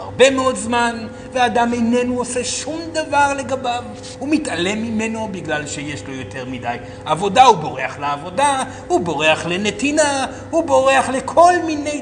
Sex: male